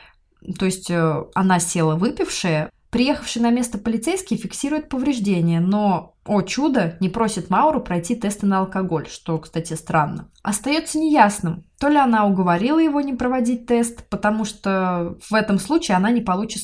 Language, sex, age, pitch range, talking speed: Russian, female, 20-39, 175-235 Hz, 150 wpm